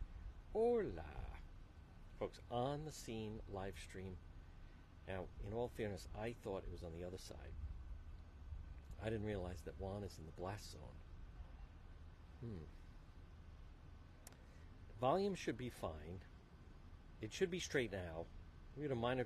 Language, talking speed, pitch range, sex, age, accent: English, 135 wpm, 85-110 Hz, male, 50-69, American